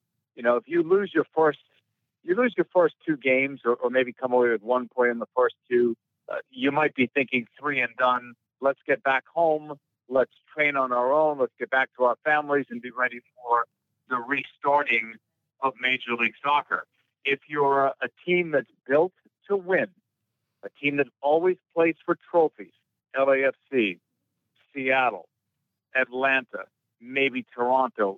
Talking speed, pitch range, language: 170 wpm, 125-160 Hz, English